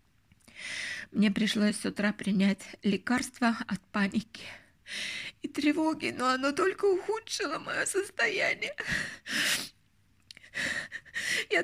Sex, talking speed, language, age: female, 90 wpm, Russian, 20-39